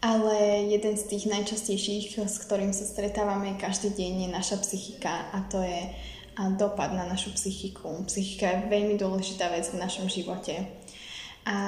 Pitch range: 190-205 Hz